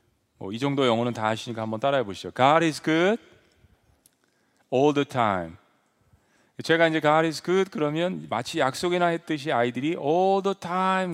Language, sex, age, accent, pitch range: Korean, male, 40-59, native, 135-185 Hz